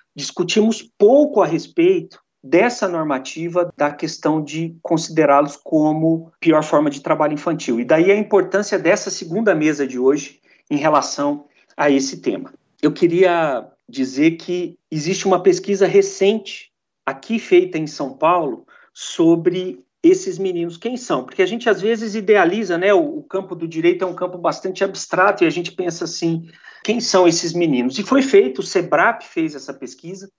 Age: 50-69